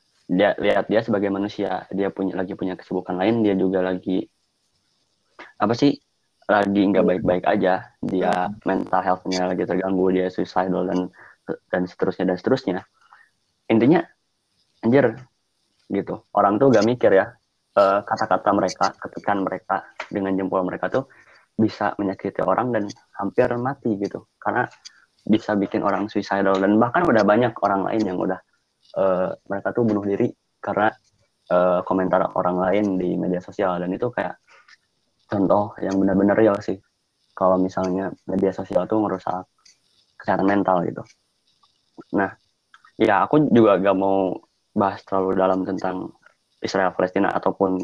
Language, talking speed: Indonesian, 140 wpm